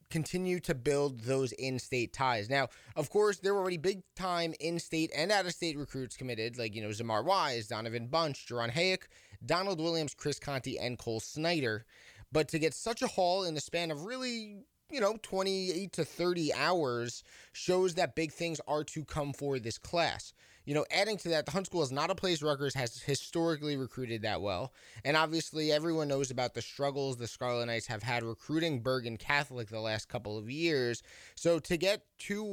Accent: American